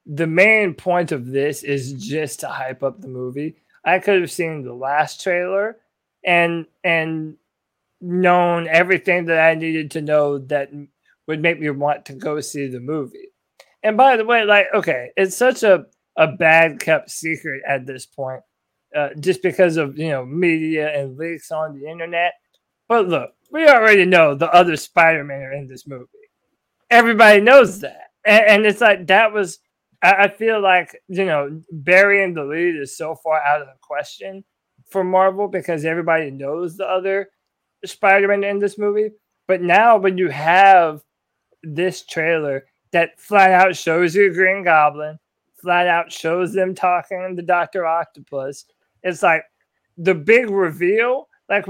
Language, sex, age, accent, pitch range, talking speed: English, male, 20-39, American, 150-195 Hz, 165 wpm